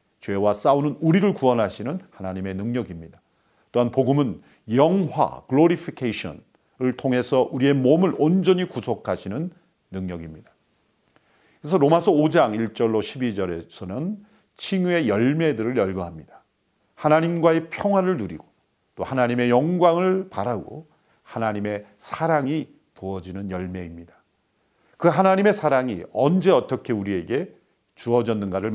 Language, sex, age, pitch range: Korean, male, 40-59, 110-155 Hz